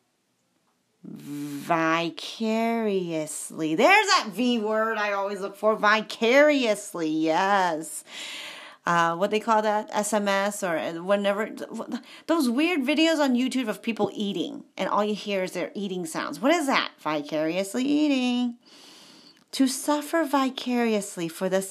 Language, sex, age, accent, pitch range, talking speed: English, female, 30-49, American, 190-275 Hz, 125 wpm